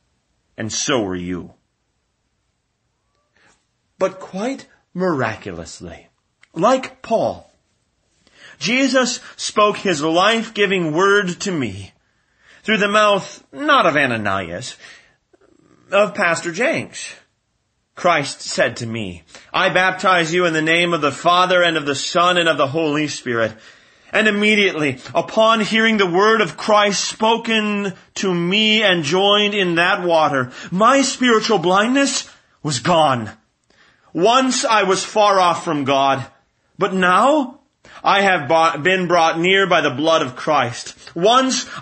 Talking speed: 125 wpm